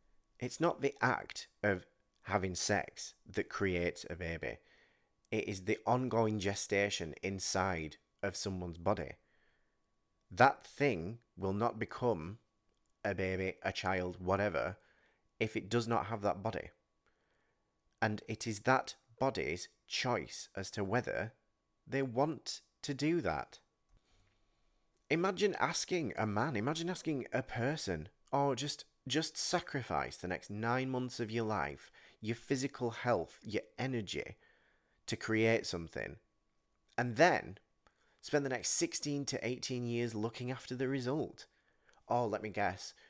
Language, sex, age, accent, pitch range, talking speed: English, male, 30-49, British, 95-125 Hz, 130 wpm